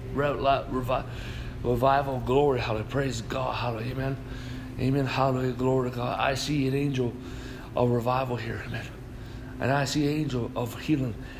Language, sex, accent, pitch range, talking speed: English, male, American, 125-135 Hz, 165 wpm